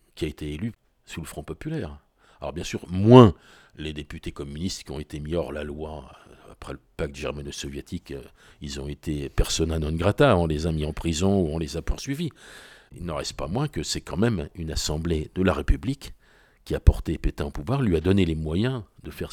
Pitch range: 80-120 Hz